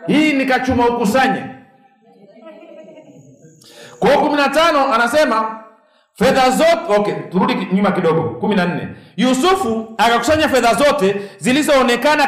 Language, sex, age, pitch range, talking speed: Swahili, male, 50-69, 185-265 Hz, 95 wpm